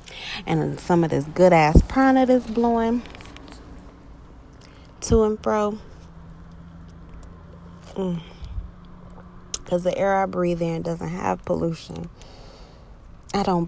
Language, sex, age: English, female, 30-49